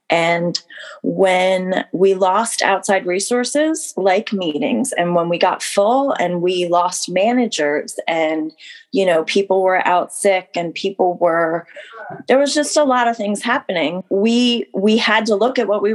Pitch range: 170-210 Hz